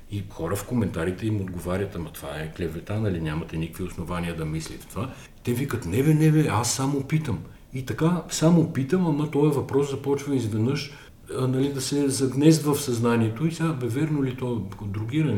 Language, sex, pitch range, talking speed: Bulgarian, male, 95-140 Hz, 190 wpm